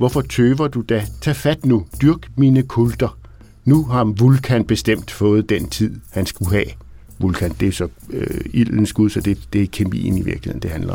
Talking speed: 205 wpm